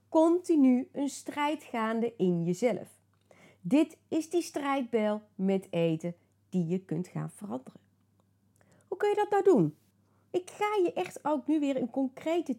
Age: 30-49